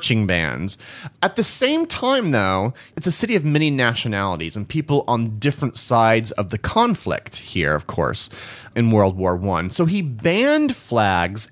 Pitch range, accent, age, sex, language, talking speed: 110-170 Hz, American, 30-49, male, English, 160 wpm